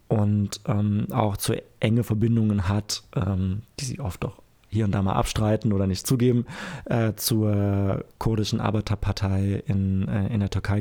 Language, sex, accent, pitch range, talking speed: German, male, German, 105-120 Hz, 160 wpm